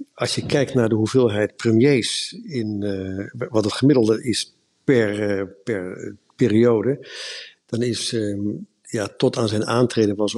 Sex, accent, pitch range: male, Dutch, 105-125 Hz